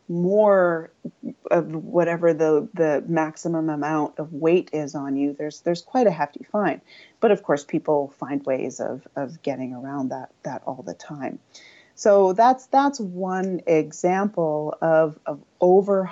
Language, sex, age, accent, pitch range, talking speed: English, female, 30-49, American, 155-185 Hz, 155 wpm